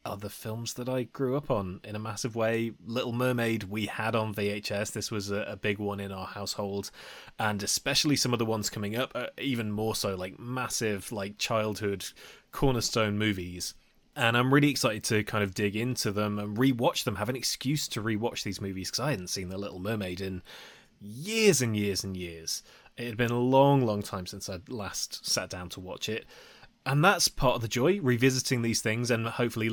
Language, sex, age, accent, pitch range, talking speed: English, male, 20-39, British, 105-125 Hz, 205 wpm